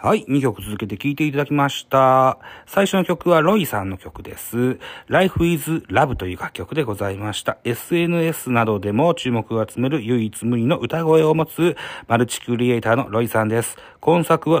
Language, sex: Japanese, male